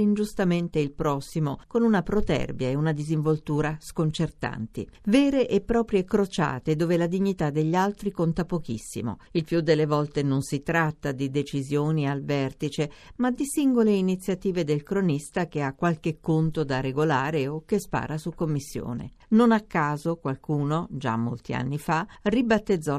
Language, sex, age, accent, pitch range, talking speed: Italian, female, 50-69, native, 145-195 Hz, 150 wpm